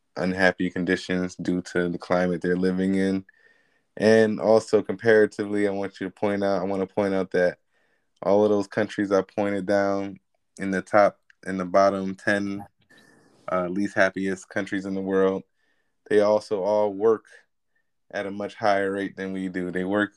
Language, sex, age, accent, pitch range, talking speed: English, male, 20-39, American, 90-100 Hz, 175 wpm